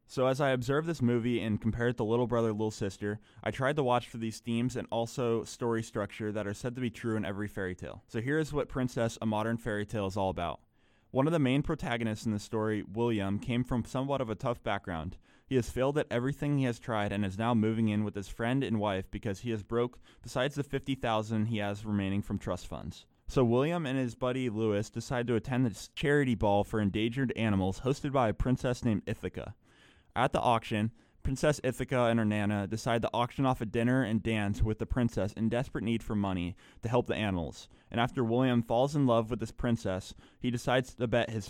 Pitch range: 105-125 Hz